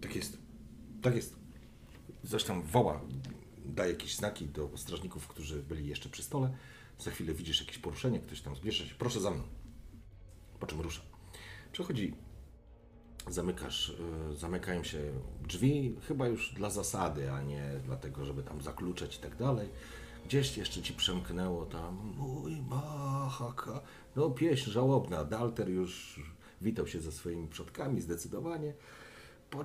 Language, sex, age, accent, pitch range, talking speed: Polish, male, 40-59, native, 75-120 Hz, 135 wpm